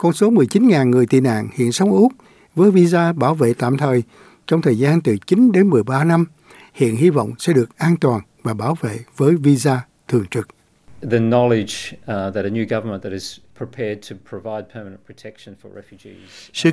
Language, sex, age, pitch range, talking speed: Vietnamese, male, 60-79, 125-180 Hz, 140 wpm